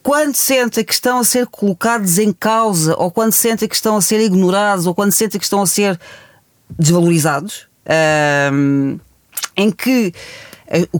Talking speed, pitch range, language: 155 wpm, 165-220 Hz, Portuguese